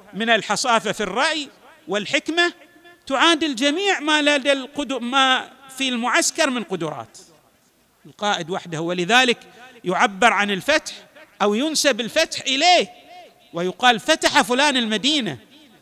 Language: Arabic